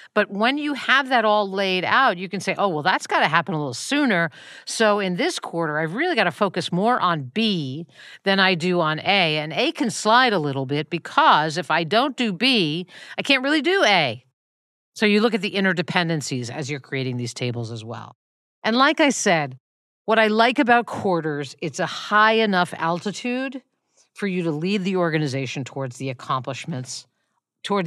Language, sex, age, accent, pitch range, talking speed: English, female, 50-69, American, 140-210 Hz, 200 wpm